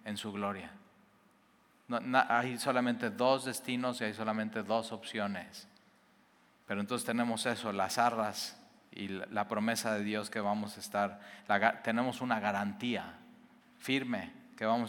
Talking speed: 145 wpm